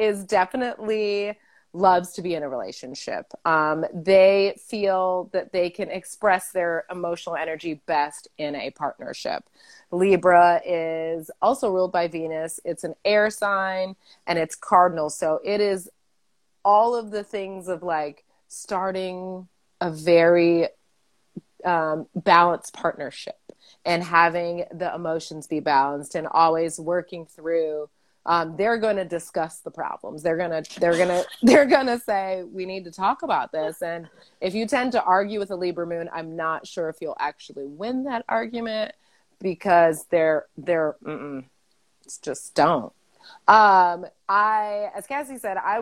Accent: American